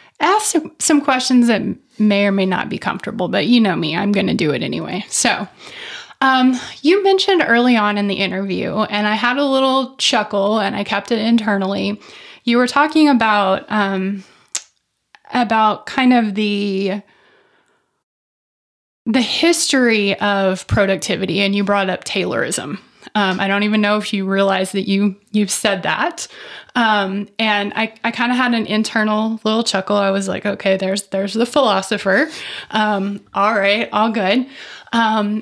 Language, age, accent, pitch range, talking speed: English, 20-39, American, 200-245 Hz, 165 wpm